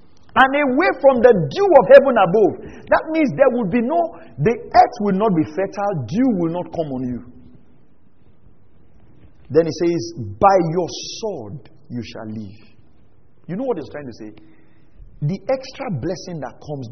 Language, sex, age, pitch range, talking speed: English, male, 40-59, 115-185 Hz, 165 wpm